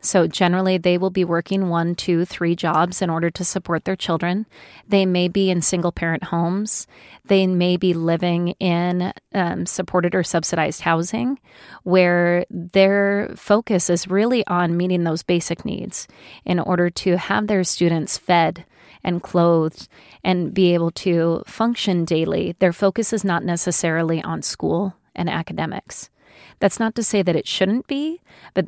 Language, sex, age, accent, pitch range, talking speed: English, female, 30-49, American, 170-195 Hz, 155 wpm